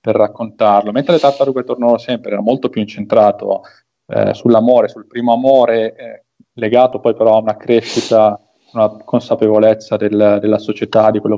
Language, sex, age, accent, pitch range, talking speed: Italian, male, 20-39, native, 110-145 Hz, 155 wpm